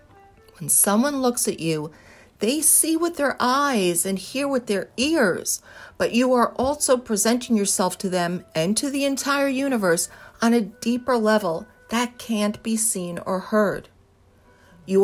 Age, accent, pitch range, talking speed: 50-69, American, 165-225 Hz, 155 wpm